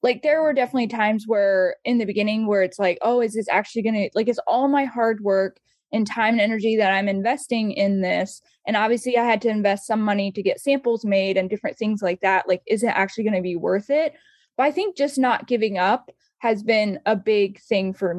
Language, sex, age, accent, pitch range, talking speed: English, female, 10-29, American, 205-250 Hz, 240 wpm